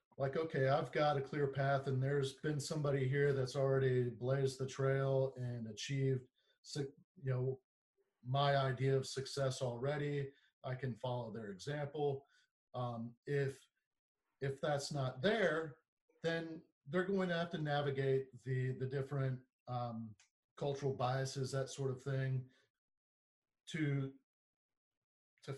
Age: 40-59